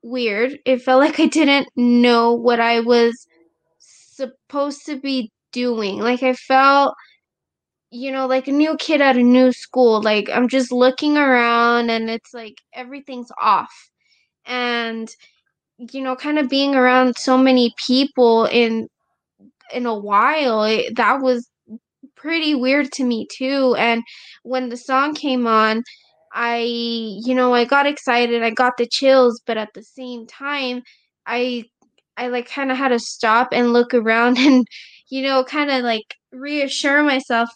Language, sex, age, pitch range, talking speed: English, female, 20-39, 235-265 Hz, 155 wpm